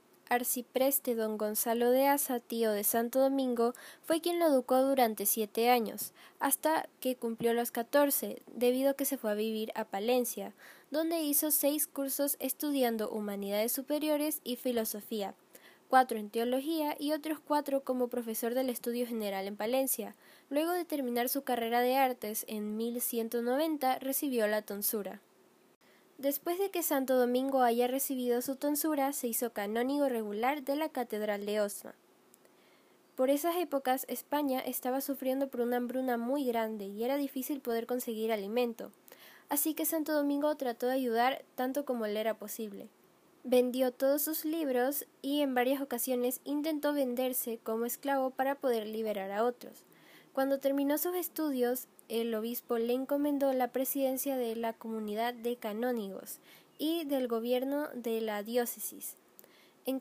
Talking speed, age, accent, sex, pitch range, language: 150 wpm, 10-29, Argentinian, female, 230-280 Hz, Spanish